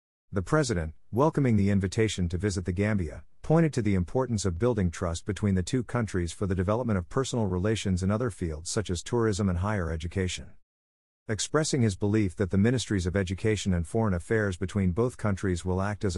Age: 50-69